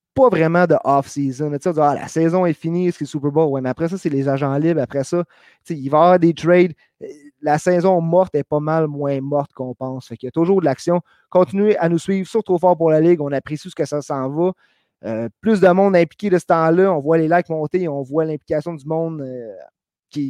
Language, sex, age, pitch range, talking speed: French, male, 30-49, 140-180 Hz, 255 wpm